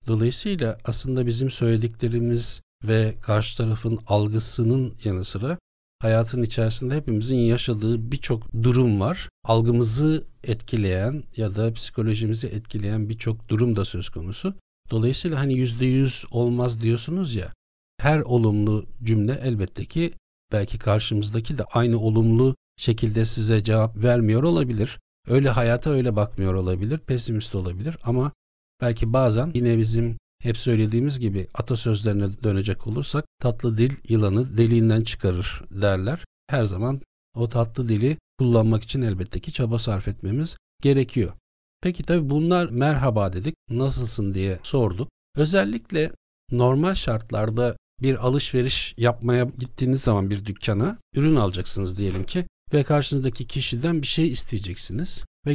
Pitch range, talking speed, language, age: 110-130 Hz, 125 wpm, Turkish, 60-79